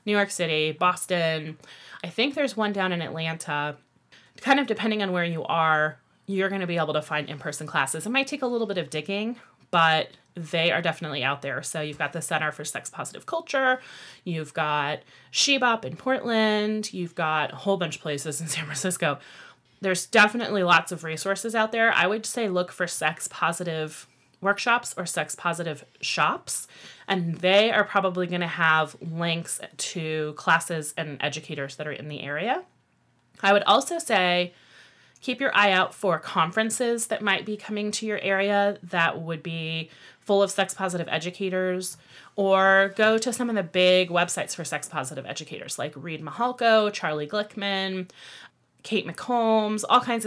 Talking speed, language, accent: 175 wpm, English, American